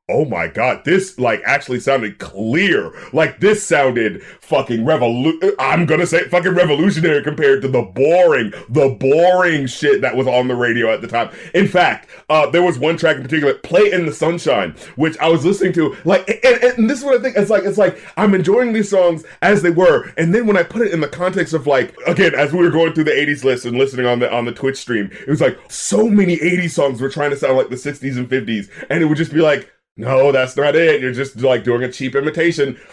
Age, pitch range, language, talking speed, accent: 30-49, 135-200 Hz, English, 240 wpm, American